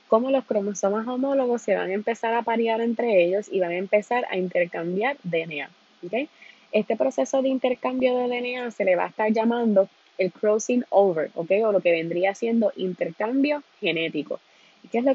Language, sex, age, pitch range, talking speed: Spanish, female, 20-39, 180-230 Hz, 180 wpm